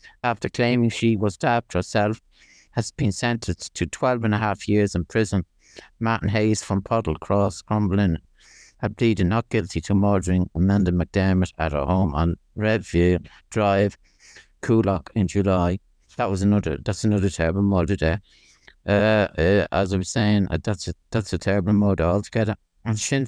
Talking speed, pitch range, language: 160 wpm, 100-120 Hz, English